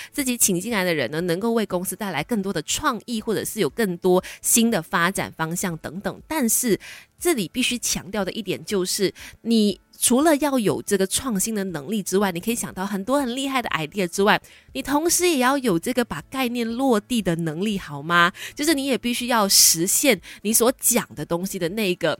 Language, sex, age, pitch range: Chinese, female, 20-39, 175-235 Hz